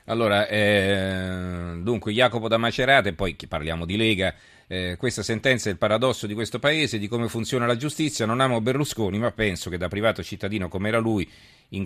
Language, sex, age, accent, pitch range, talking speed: Italian, male, 40-59, native, 90-115 Hz, 195 wpm